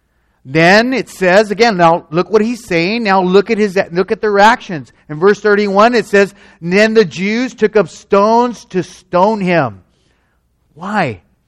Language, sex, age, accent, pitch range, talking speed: English, male, 40-59, American, 140-205 Hz, 165 wpm